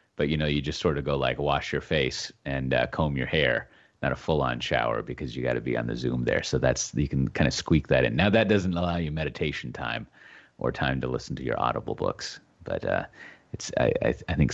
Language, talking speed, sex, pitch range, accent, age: English, 250 wpm, male, 75-100 Hz, American, 30-49